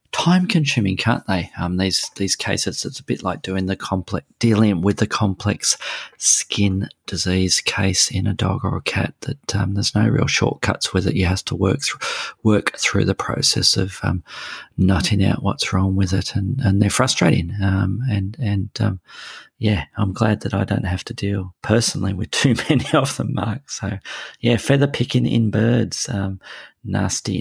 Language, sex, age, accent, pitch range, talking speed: English, male, 40-59, Australian, 95-110 Hz, 180 wpm